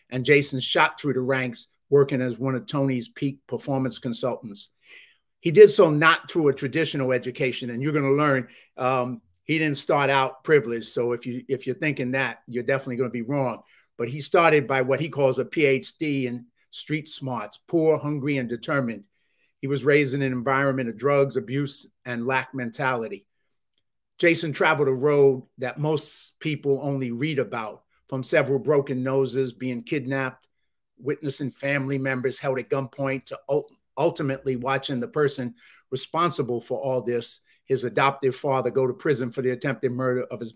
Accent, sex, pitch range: American, male, 125-140 Hz